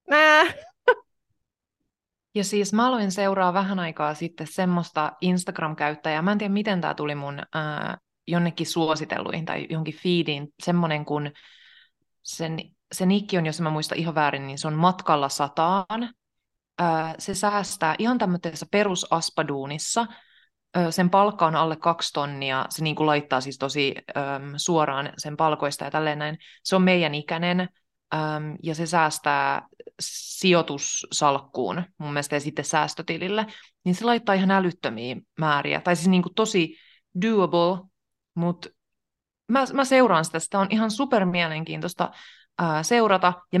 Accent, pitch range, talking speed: native, 155-205 Hz, 135 wpm